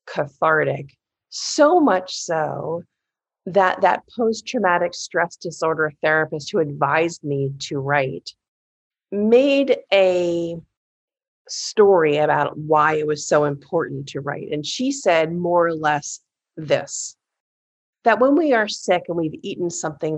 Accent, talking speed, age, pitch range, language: American, 125 wpm, 40-59, 155-195 Hz, English